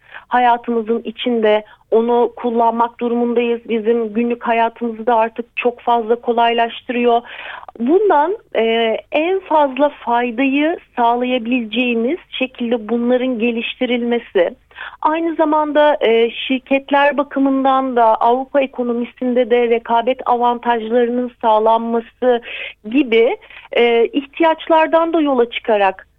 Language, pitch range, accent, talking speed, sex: Turkish, 235-295 Hz, native, 90 wpm, female